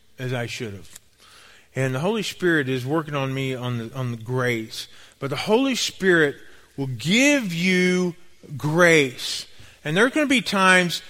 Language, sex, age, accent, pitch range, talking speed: English, male, 40-59, American, 110-180 Hz, 175 wpm